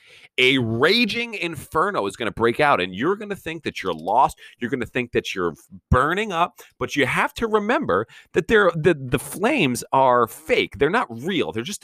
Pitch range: 105-160 Hz